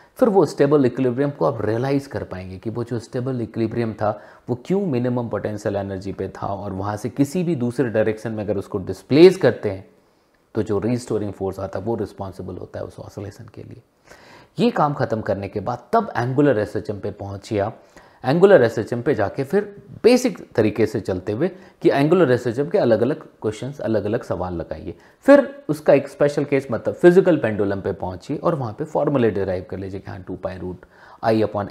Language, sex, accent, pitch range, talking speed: Hindi, male, native, 100-140 Hz, 200 wpm